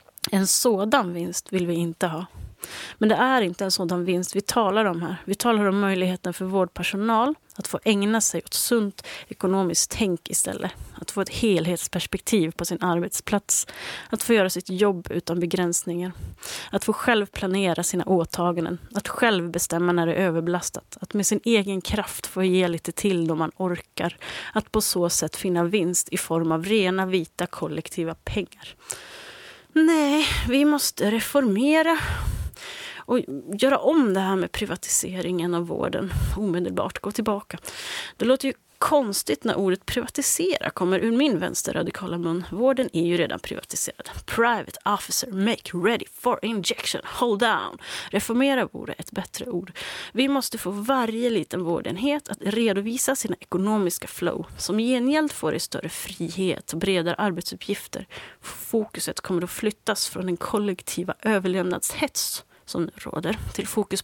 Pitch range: 175-230 Hz